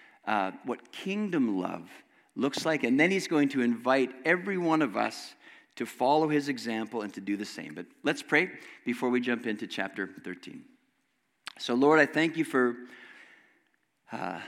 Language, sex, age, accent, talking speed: English, male, 50-69, American, 170 wpm